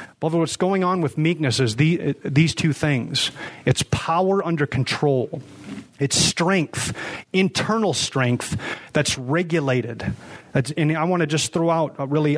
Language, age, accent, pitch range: English, 30-49, American, 135-170 Hz